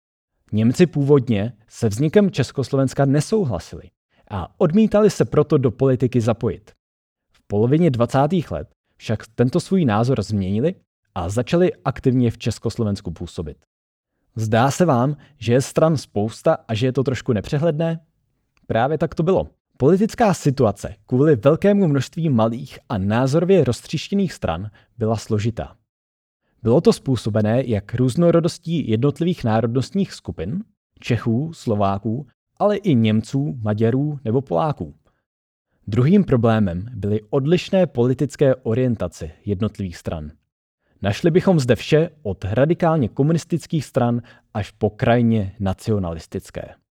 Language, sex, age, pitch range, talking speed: Czech, male, 30-49, 110-155 Hz, 120 wpm